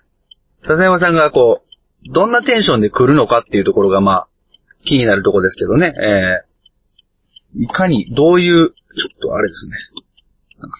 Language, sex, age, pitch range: Japanese, male, 30-49, 100-150 Hz